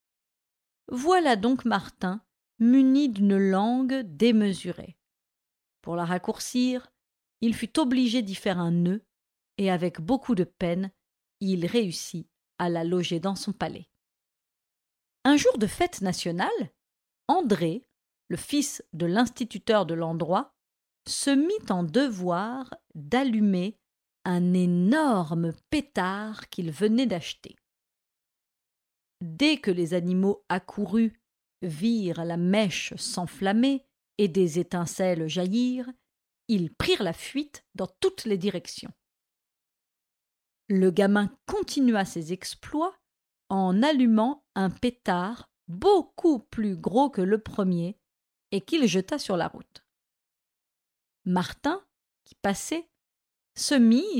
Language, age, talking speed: French, 50-69, 110 wpm